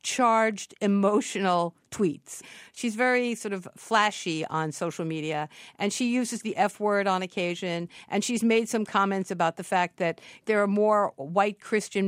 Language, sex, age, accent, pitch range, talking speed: English, female, 50-69, American, 180-230 Hz, 165 wpm